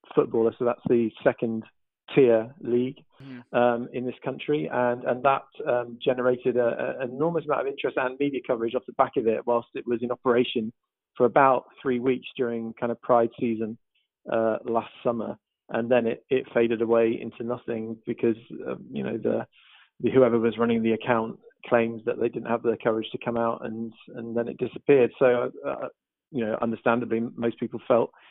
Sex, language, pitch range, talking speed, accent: male, English, 115-135 Hz, 185 wpm, British